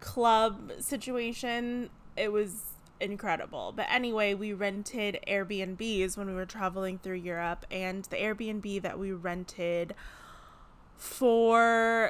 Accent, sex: American, female